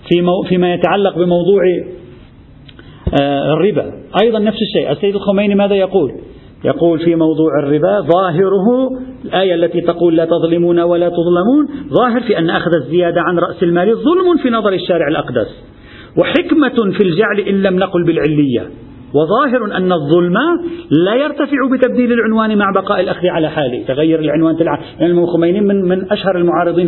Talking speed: 145 wpm